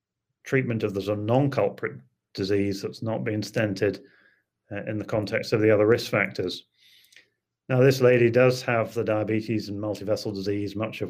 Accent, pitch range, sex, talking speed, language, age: British, 100-120 Hz, male, 170 wpm, English, 30-49